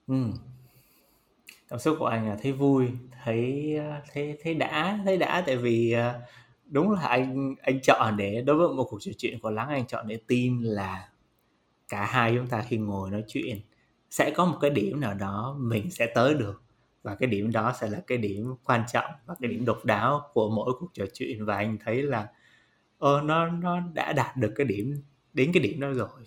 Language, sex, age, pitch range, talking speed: Vietnamese, male, 20-39, 110-135 Hz, 210 wpm